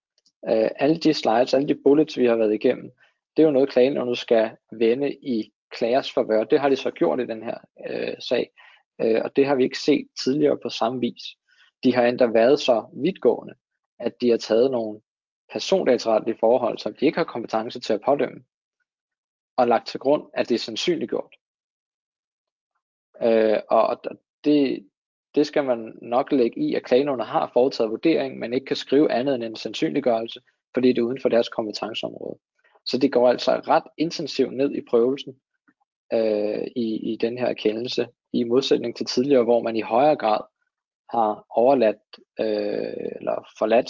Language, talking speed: Danish, 180 wpm